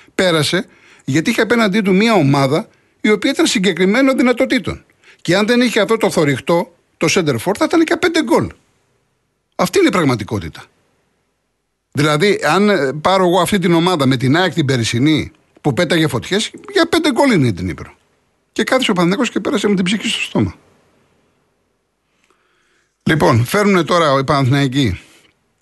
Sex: male